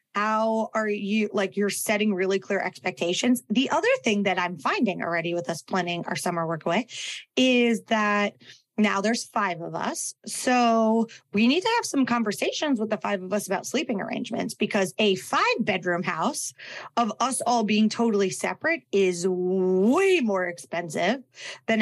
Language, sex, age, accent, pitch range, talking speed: English, female, 30-49, American, 195-235 Hz, 170 wpm